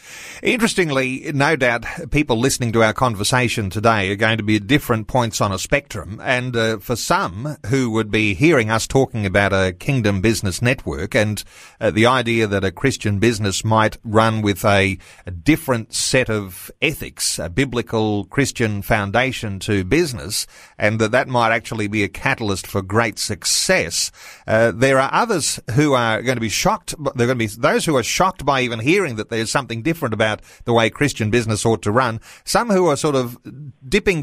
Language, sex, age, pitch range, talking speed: English, male, 40-59, 110-135 Hz, 190 wpm